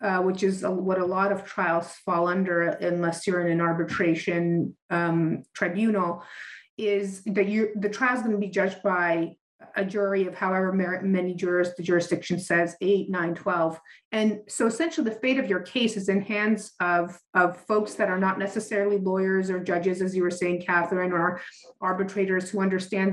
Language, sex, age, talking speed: English, female, 30-49, 175 wpm